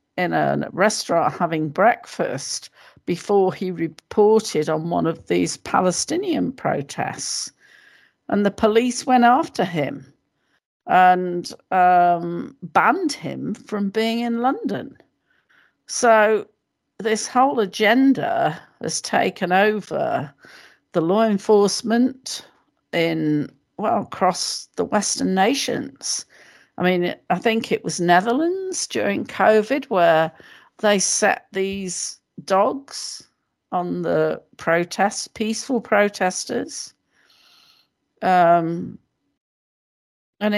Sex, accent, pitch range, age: female, British, 175-225 Hz, 50-69